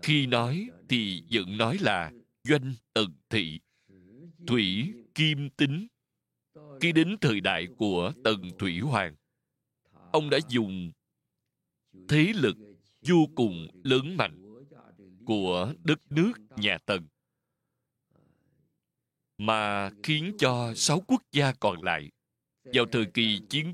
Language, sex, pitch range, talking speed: Vietnamese, male, 100-150 Hz, 115 wpm